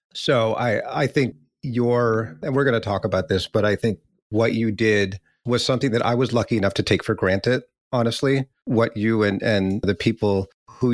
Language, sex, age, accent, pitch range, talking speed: English, male, 30-49, American, 105-130 Hz, 205 wpm